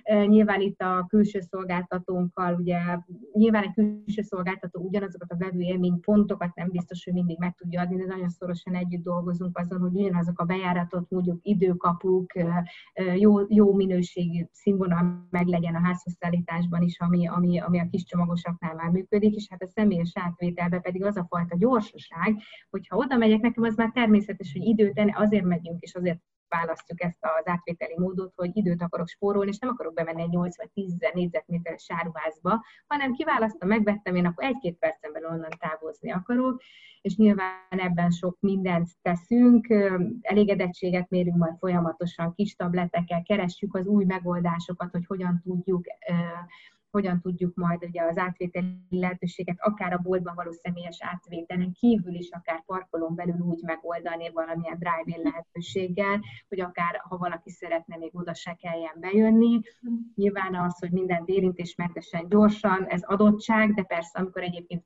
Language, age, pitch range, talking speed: Hungarian, 30-49, 175-200 Hz, 155 wpm